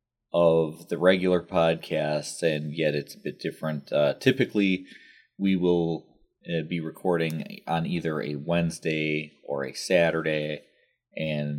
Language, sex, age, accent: English, male, 30-49, American